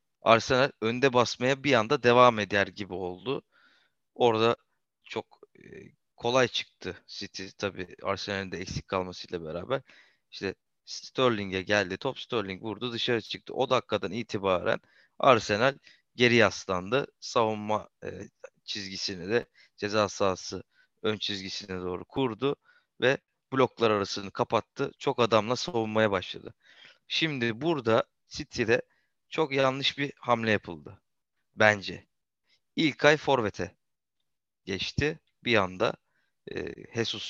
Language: Turkish